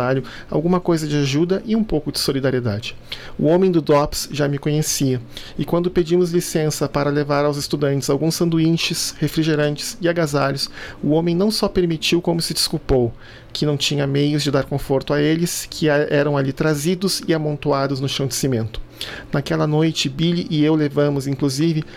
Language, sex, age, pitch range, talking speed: Portuguese, male, 40-59, 140-160 Hz, 170 wpm